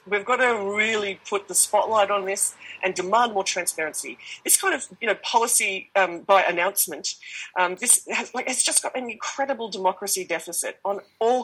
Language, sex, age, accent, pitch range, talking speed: English, female, 40-59, Australian, 170-210 Hz, 185 wpm